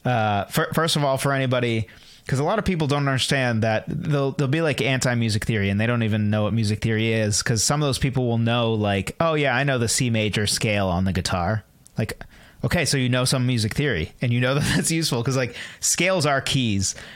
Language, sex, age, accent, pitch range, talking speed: English, male, 30-49, American, 110-135 Hz, 240 wpm